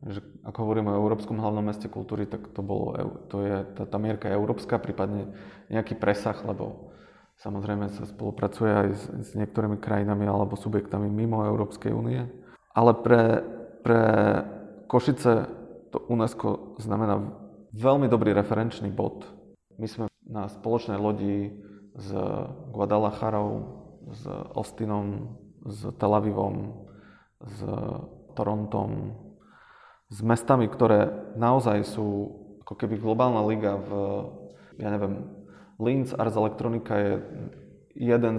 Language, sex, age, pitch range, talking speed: Slovak, male, 20-39, 100-110 Hz, 115 wpm